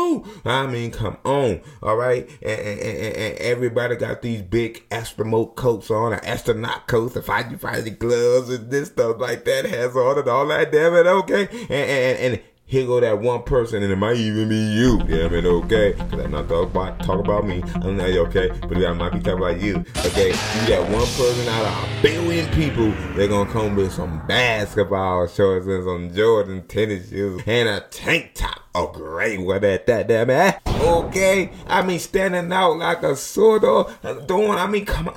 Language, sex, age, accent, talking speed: English, male, 30-49, American, 210 wpm